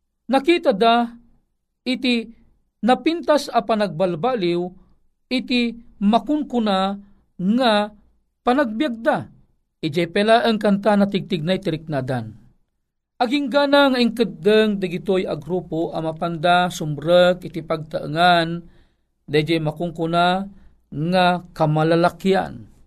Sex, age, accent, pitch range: male, 50-69, native, 175-220 Hz